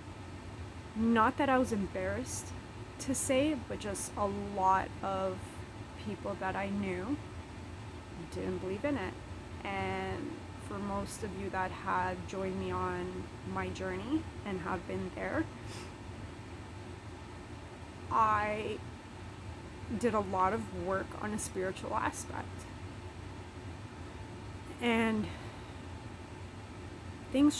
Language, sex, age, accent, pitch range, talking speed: English, female, 30-49, American, 95-115 Hz, 105 wpm